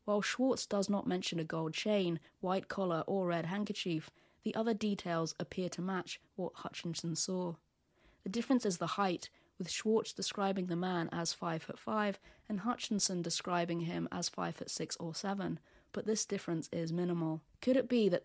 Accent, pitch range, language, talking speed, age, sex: British, 160-195 Hz, English, 180 wpm, 20-39, female